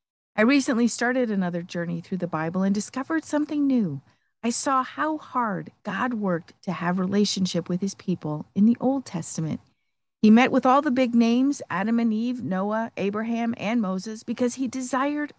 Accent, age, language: American, 50-69, English